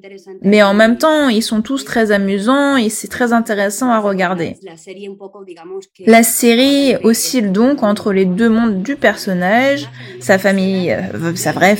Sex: female